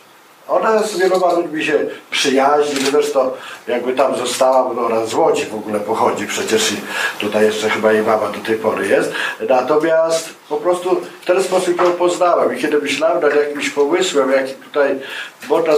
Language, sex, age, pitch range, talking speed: Polish, male, 50-69, 135-155 Hz, 165 wpm